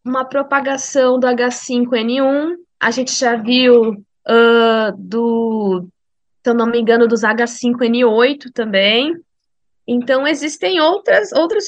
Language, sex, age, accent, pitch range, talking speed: Portuguese, female, 20-39, Brazilian, 235-290 Hz, 105 wpm